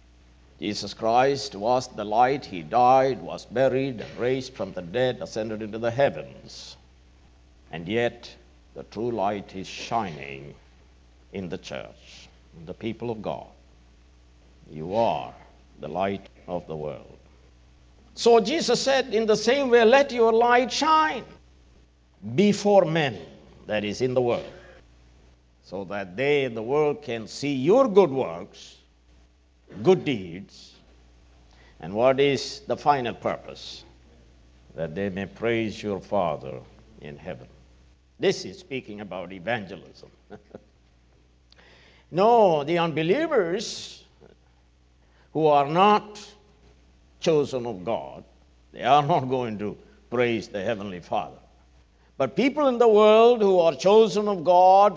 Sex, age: male, 60-79